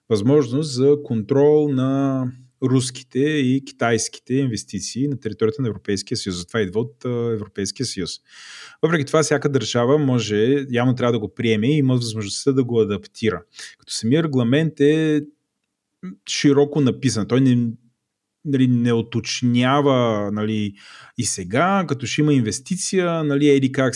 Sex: male